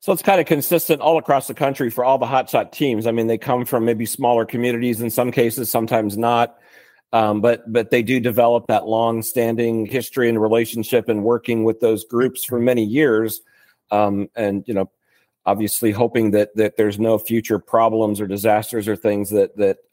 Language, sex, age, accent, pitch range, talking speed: English, male, 40-59, American, 110-125 Hz, 200 wpm